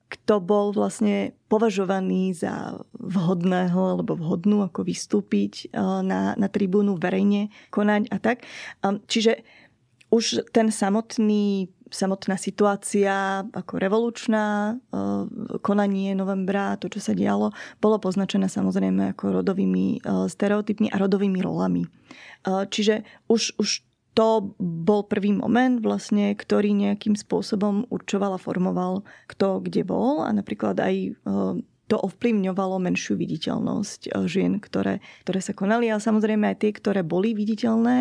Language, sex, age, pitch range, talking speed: Slovak, female, 20-39, 190-220 Hz, 120 wpm